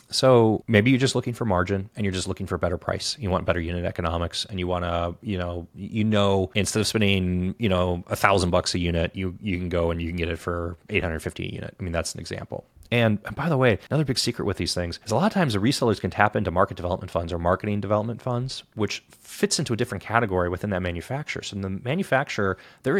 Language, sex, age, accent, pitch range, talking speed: English, male, 30-49, American, 90-115 Hz, 255 wpm